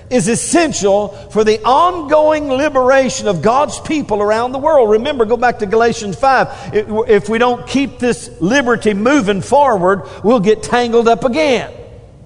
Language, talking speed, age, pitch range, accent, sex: English, 150 wpm, 50-69, 175-240 Hz, American, male